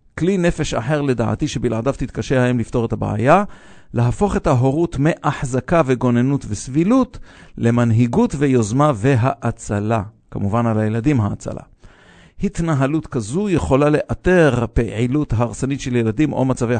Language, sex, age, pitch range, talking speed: English, male, 50-69, 120-150 Hz, 120 wpm